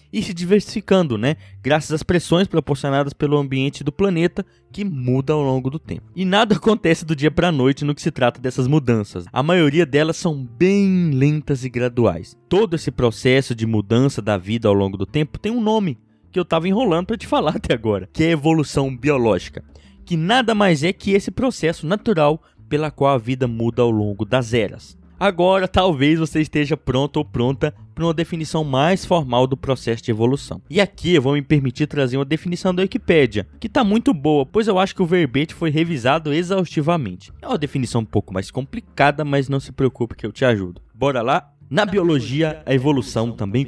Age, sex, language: 20-39, male, Portuguese